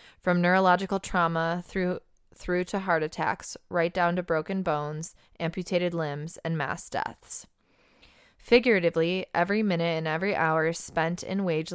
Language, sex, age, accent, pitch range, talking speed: English, female, 20-39, American, 160-185 Hz, 140 wpm